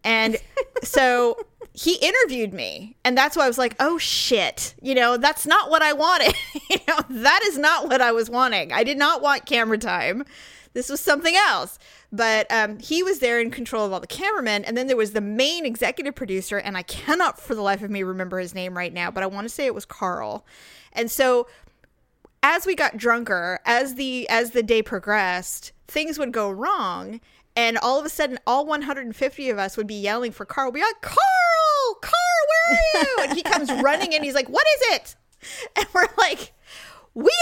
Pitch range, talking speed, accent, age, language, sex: 235-330 Hz, 210 wpm, American, 30-49, English, female